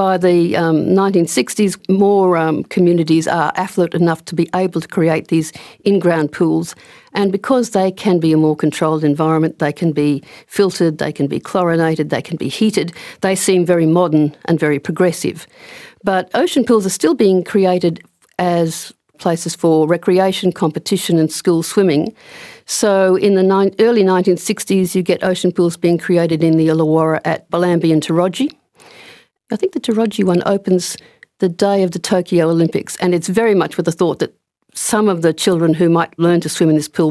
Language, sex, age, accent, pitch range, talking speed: English, female, 50-69, Australian, 165-200 Hz, 180 wpm